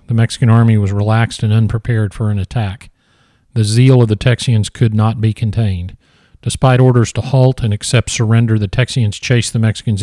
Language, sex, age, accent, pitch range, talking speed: English, male, 40-59, American, 105-120 Hz, 185 wpm